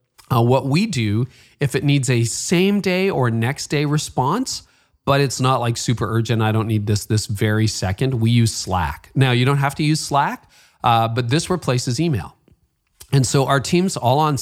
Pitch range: 110-140 Hz